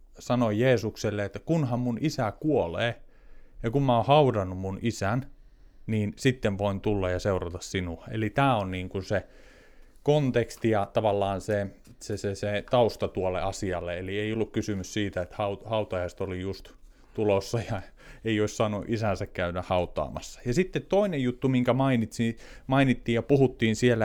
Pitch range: 100-125 Hz